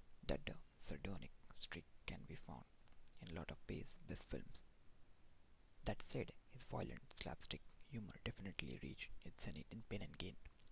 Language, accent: English, Indian